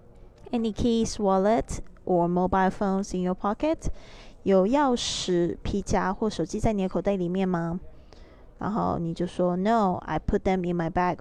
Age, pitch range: 20-39, 180-215 Hz